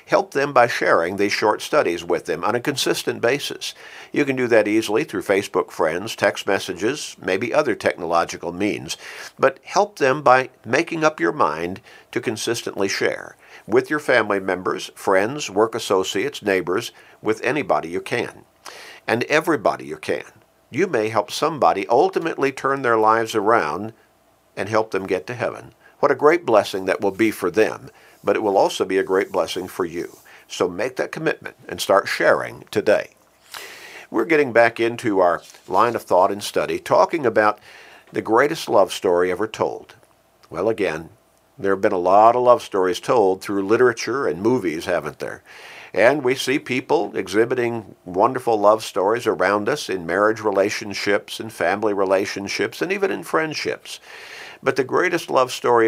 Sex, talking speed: male, 170 wpm